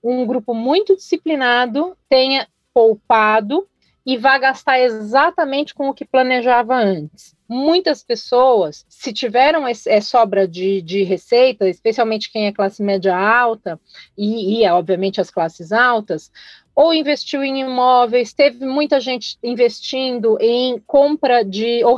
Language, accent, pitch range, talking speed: Portuguese, Brazilian, 210-280 Hz, 130 wpm